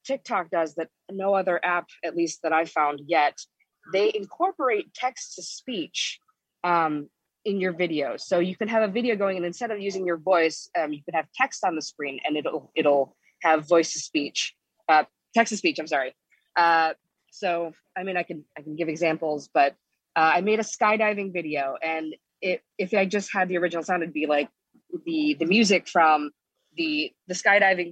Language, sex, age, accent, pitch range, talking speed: English, female, 20-39, American, 160-205 Hz, 195 wpm